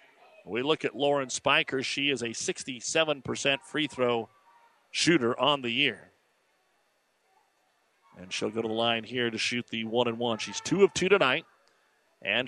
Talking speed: 165 wpm